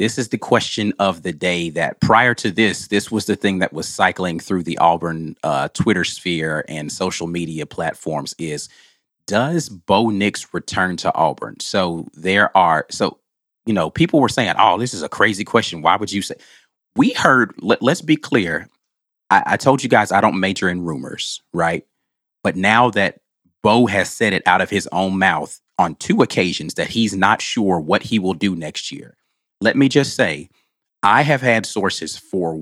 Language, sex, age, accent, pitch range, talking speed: English, male, 30-49, American, 85-110 Hz, 190 wpm